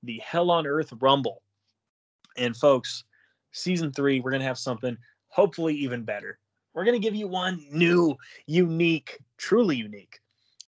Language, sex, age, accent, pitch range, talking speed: English, male, 20-39, American, 120-155 Hz, 150 wpm